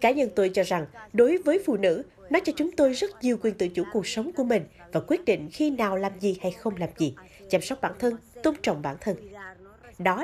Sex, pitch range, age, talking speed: female, 180-275 Hz, 20-39, 245 wpm